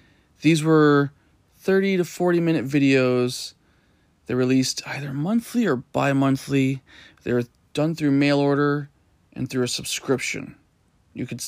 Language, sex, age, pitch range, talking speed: English, male, 20-39, 120-150 Hz, 125 wpm